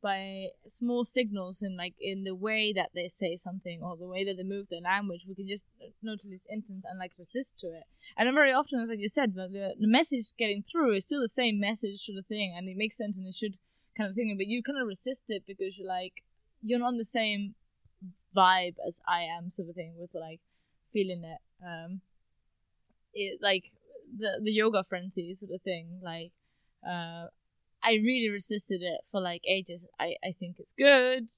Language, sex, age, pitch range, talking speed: English, female, 20-39, 185-225 Hz, 210 wpm